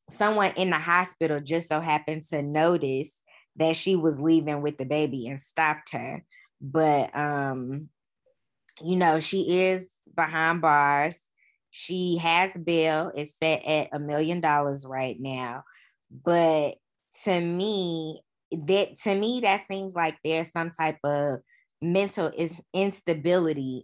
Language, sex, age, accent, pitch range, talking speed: English, female, 20-39, American, 145-170 Hz, 135 wpm